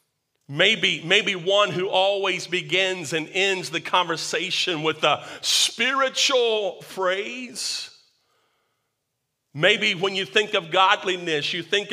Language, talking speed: English, 110 wpm